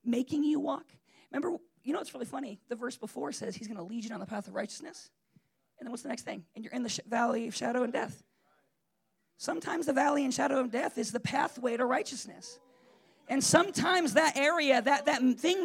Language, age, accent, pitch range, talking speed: English, 40-59, American, 225-285 Hz, 220 wpm